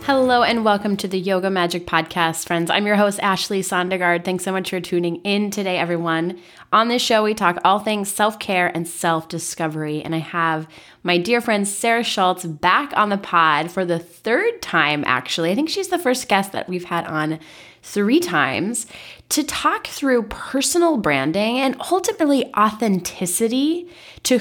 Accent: American